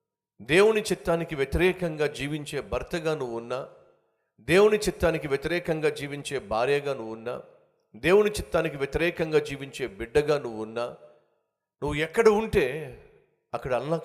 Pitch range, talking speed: 140-185 Hz, 105 wpm